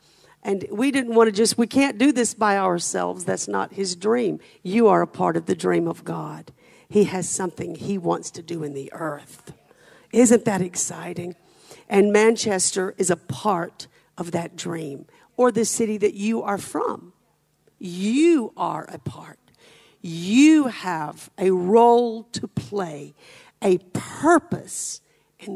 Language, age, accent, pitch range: English, 50-69, American, 185-255 Hz